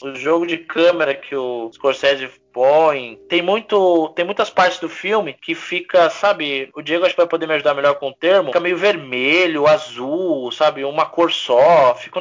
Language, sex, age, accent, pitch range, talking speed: Portuguese, male, 20-39, Brazilian, 145-195 Hz, 195 wpm